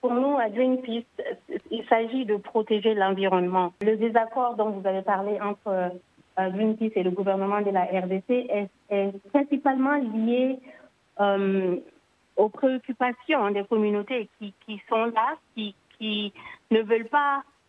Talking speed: 140 wpm